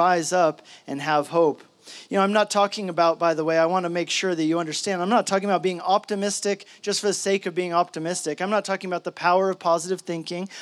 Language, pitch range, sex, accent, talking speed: English, 160-200 Hz, male, American, 250 wpm